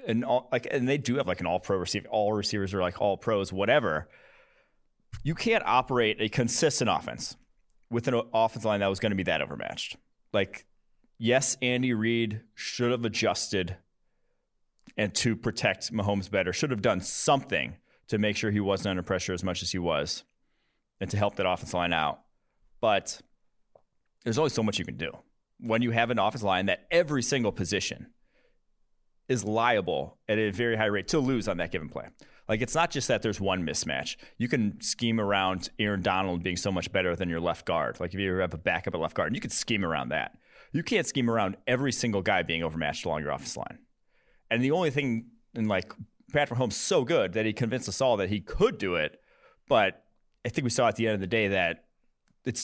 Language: English